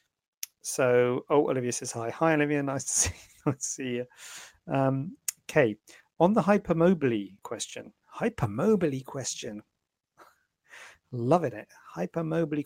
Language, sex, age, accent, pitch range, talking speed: English, male, 40-59, British, 120-150 Hz, 125 wpm